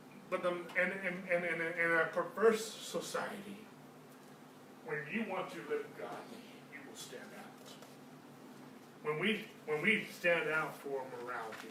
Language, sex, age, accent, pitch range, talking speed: English, male, 40-59, American, 145-200 Hz, 145 wpm